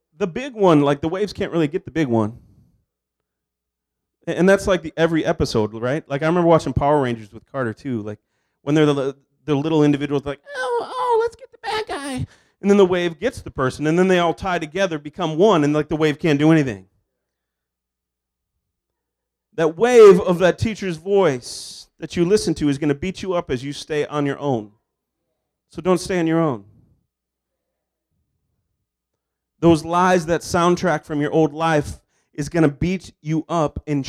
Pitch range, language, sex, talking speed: 140-180 Hz, English, male, 190 wpm